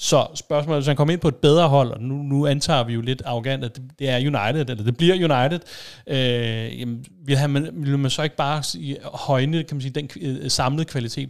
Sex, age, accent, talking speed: male, 30-49, native, 235 wpm